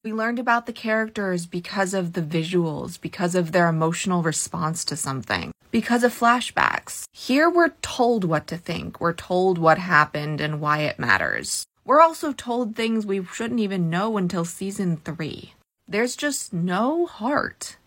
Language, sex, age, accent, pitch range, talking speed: English, female, 20-39, American, 180-240 Hz, 160 wpm